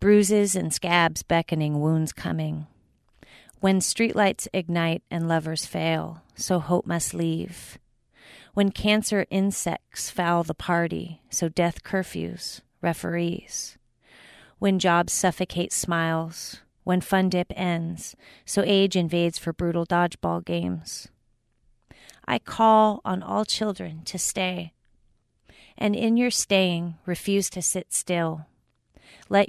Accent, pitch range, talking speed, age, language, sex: American, 165-190 Hz, 115 wpm, 40-59, English, female